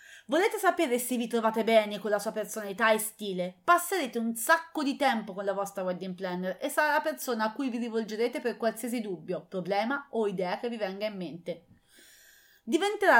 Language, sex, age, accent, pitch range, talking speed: English, female, 30-49, Italian, 215-320 Hz, 190 wpm